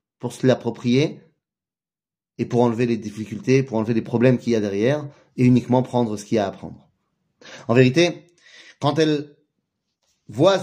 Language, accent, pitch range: French, French, 120-170 Hz